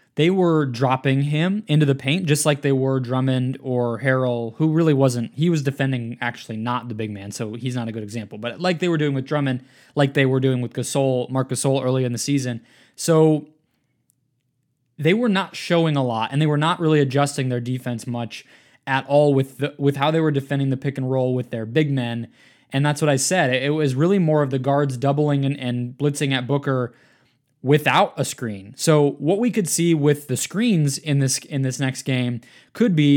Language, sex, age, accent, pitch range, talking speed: English, male, 20-39, American, 125-150 Hz, 215 wpm